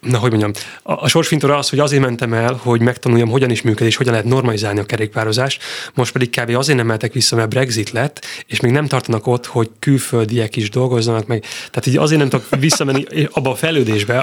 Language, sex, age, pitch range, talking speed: Hungarian, male, 30-49, 110-130 Hz, 215 wpm